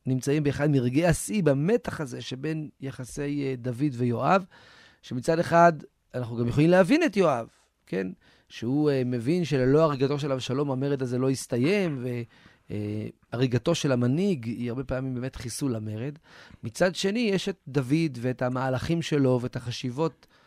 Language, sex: Hebrew, male